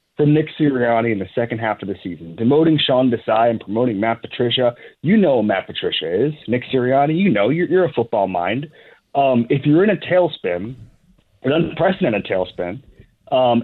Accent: American